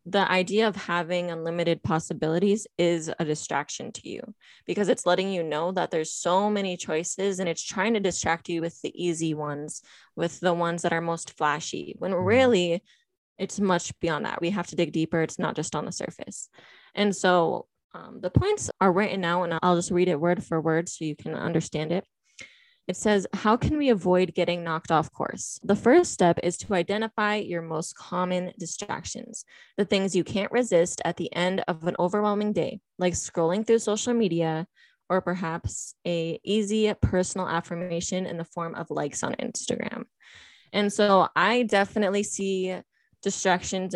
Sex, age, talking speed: female, 20-39, 180 wpm